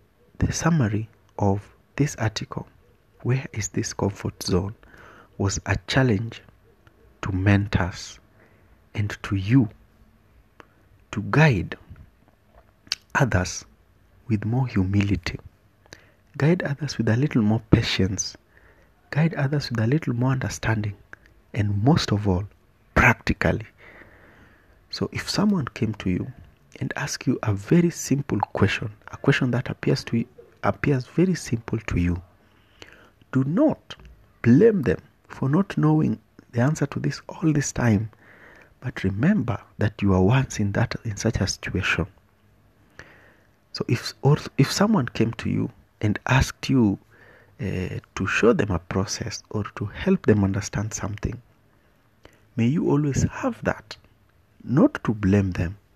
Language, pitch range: English, 100-130 Hz